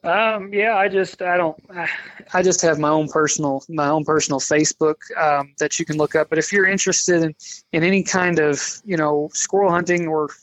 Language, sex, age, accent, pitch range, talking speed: English, male, 20-39, American, 145-165 Hz, 215 wpm